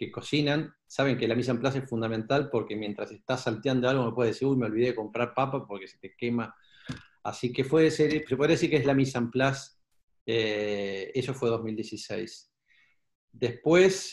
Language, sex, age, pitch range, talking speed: Spanish, male, 40-59, 110-135 Hz, 200 wpm